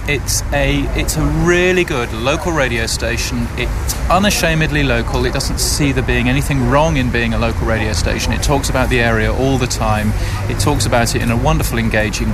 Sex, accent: male, British